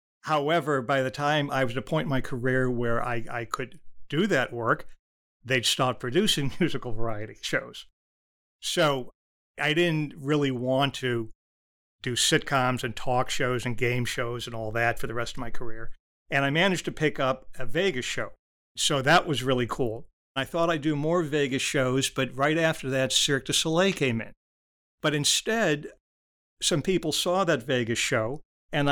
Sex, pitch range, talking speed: male, 125-150 Hz, 180 wpm